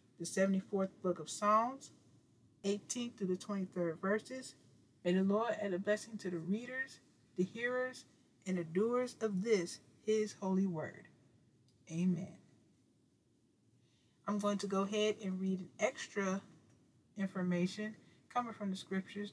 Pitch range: 175-215 Hz